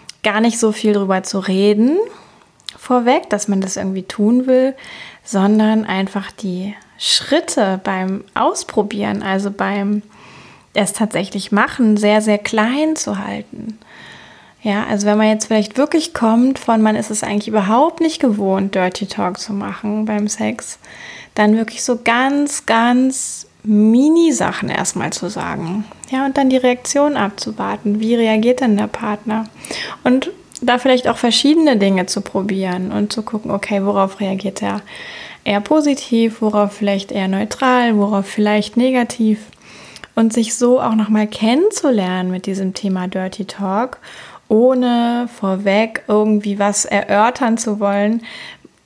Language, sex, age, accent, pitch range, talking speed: German, female, 20-39, German, 200-240 Hz, 140 wpm